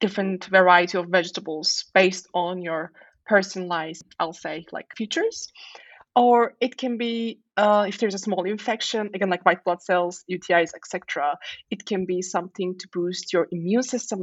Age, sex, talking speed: 20-39, female, 160 wpm